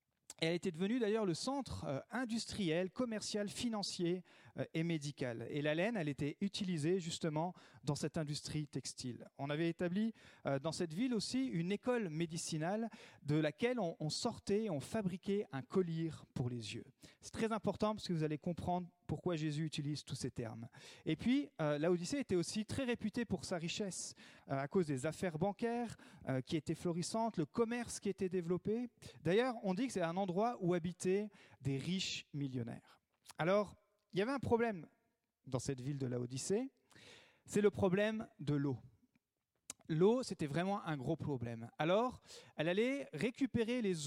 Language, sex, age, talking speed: French, male, 40-59, 170 wpm